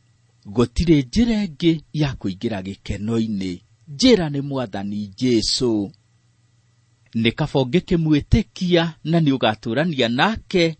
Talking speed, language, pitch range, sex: 95 wpm, English, 105-150 Hz, male